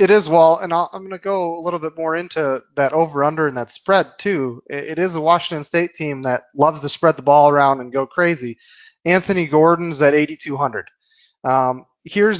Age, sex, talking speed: 30-49, male, 205 wpm